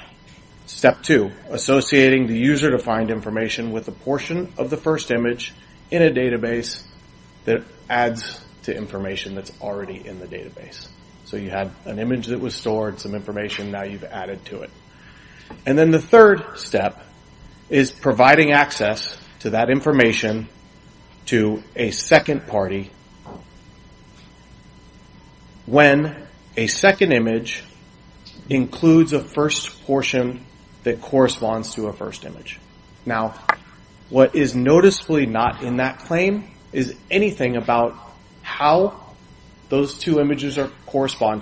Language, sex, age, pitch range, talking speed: English, male, 30-49, 110-145 Hz, 125 wpm